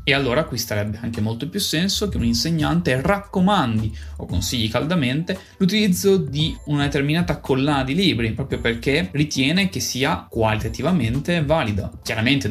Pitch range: 110-150 Hz